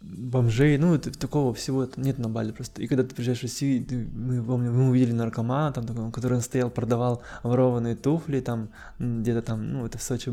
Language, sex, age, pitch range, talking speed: Russian, male, 20-39, 115-130 Hz, 190 wpm